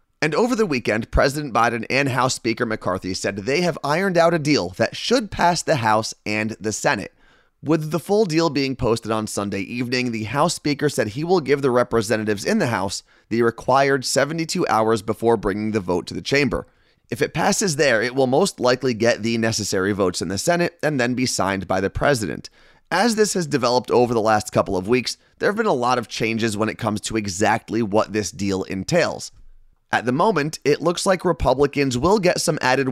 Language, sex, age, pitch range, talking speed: English, male, 30-49, 110-145 Hz, 210 wpm